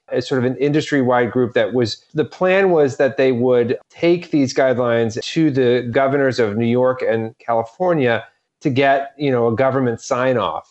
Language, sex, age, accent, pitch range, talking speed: English, male, 30-49, American, 110-135 Hz, 175 wpm